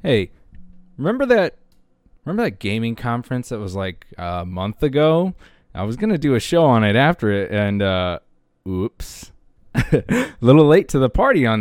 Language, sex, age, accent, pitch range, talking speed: English, male, 20-39, American, 105-170 Hz, 170 wpm